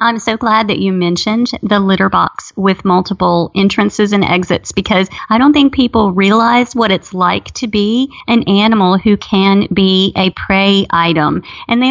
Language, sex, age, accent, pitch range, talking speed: English, female, 30-49, American, 195-240 Hz, 175 wpm